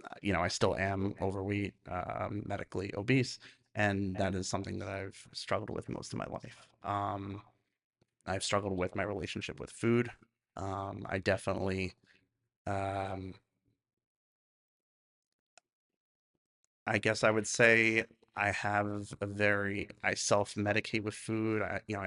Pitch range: 95-110 Hz